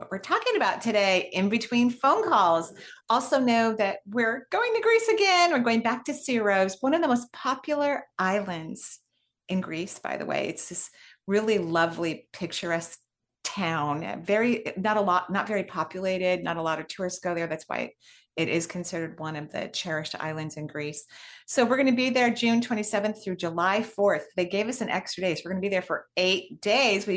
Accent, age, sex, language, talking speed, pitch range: American, 30-49, female, English, 200 wpm, 175-240 Hz